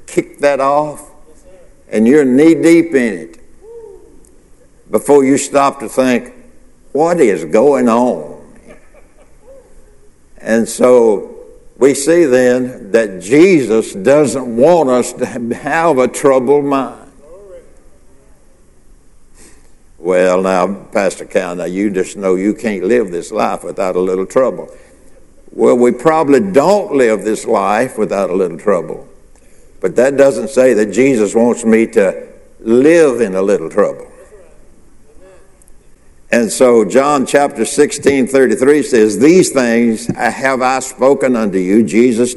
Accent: American